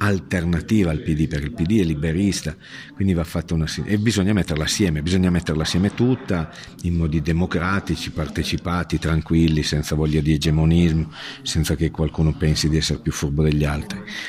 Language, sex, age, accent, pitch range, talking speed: Italian, male, 50-69, native, 80-95 Hz, 170 wpm